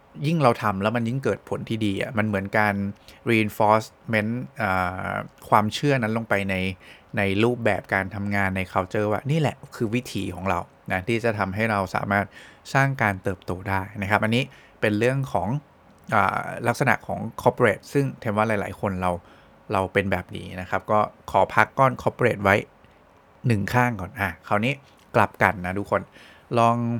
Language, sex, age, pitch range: English, male, 20-39, 100-120 Hz